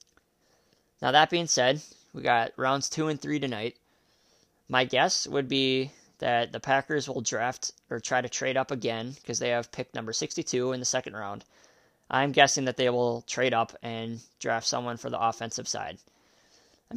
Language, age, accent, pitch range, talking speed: English, 20-39, American, 115-145 Hz, 180 wpm